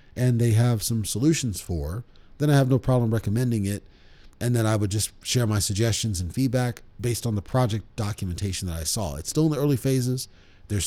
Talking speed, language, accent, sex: 210 wpm, English, American, male